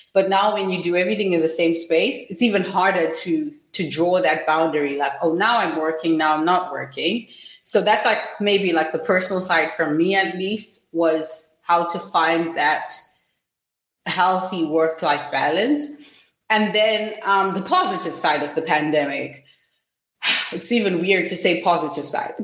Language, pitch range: German, 165-215 Hz